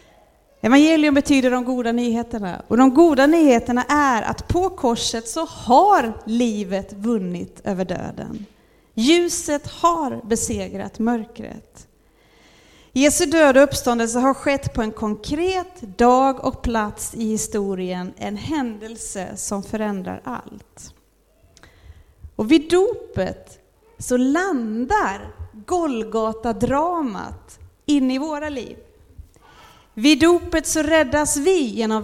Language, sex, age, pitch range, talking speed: Swedish, female, 30-49, 210-300 Hz, 110 wpm